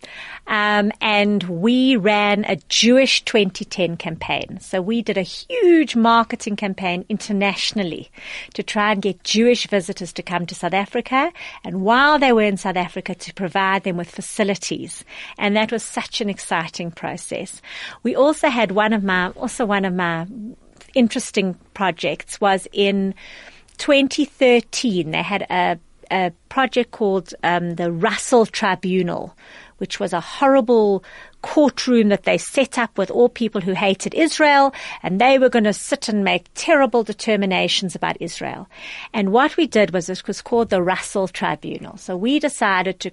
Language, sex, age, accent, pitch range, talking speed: English, female, 40-59, British, 190-245 Hz, 155 wpm